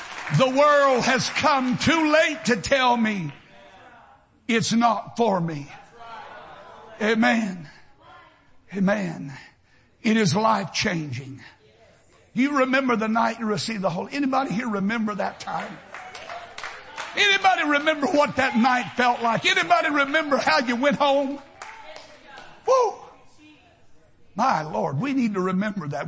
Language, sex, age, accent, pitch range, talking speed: English, male, 60-79, American, 220-295 Hz, 120 wpm